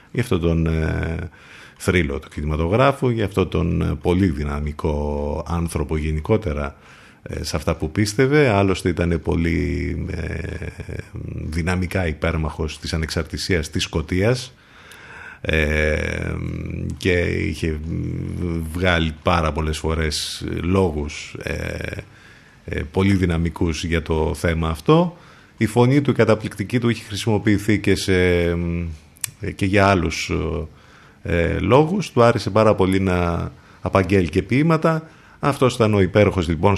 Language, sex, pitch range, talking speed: Greek, male, 80-110 Hz, 120 wpm